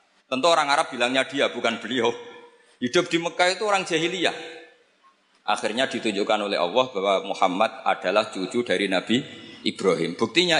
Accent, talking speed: native, 140 wpm